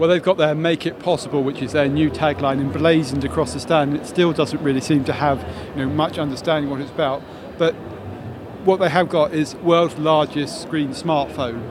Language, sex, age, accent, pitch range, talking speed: English, male, 40-59, British, 140-160 Hz, 195 wpm